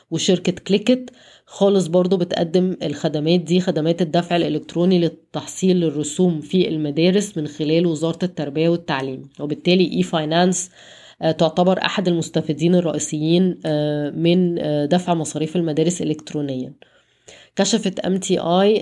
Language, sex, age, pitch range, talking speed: Arabic, female, 20-39, 155-185 Hz, 110 wpm